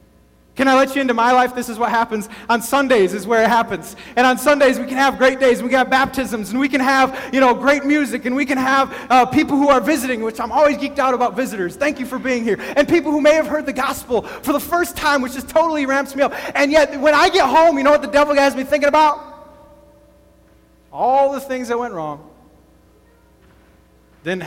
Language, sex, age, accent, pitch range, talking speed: English, male, 30-49, American, 185-270 Hz, 245 wpm